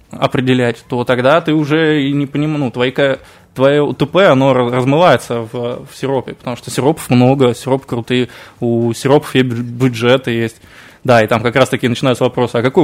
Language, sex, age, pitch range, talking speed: Russian, male, 20-39, 120-140 Hz, 175 wpm